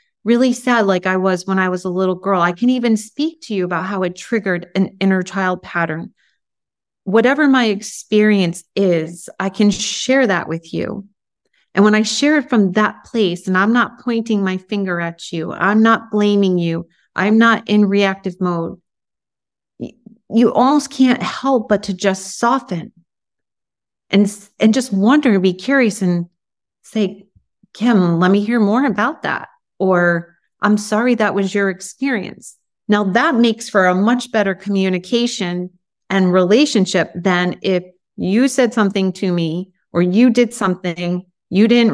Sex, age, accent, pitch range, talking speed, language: female, 40-59, American, 185-225 Hz, 165 wpm, English